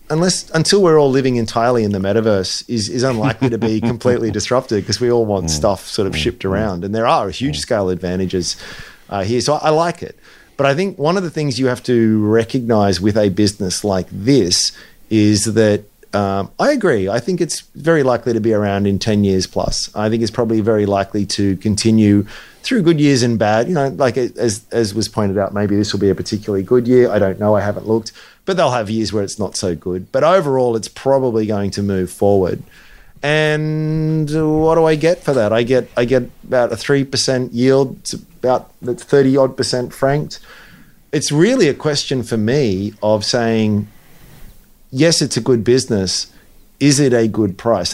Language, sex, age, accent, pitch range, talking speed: English, male, 30-49, Australian, 105-130 Hz, 205 wpm